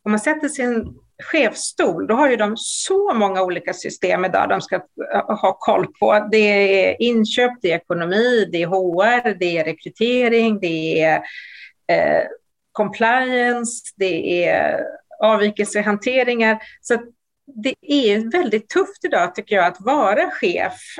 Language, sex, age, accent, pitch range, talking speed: Swedish, female, 40-59, native, 185-230 Hz, 140 wpm